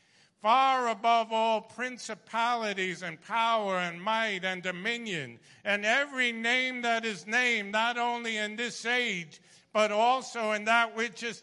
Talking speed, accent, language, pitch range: 140 wpm, American, English, 225-270 Hz